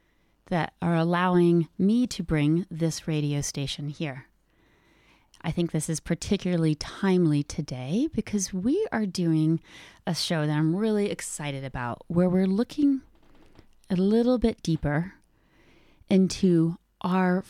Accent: American